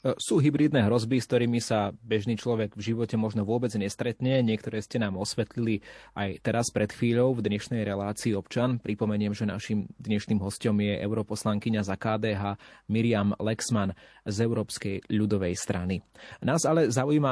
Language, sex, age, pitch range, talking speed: Slovak, male, 20-39, 105-120 Hz, 150 wpm